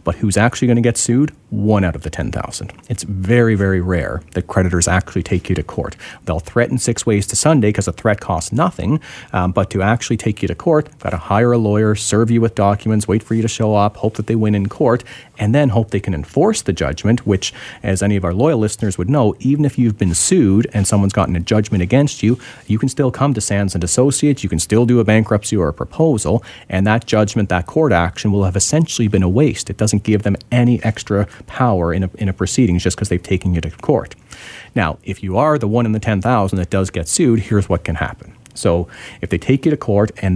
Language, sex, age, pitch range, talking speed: English, male, 40-59, 95-115 Hz, 245 wpm